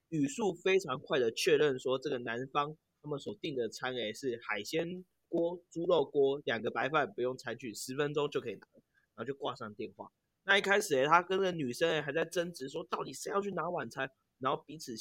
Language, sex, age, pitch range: Chinese, male, 30-49, 130-195 Hz